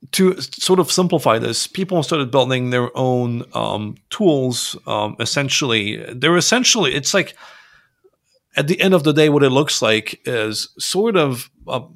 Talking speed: 160 wpm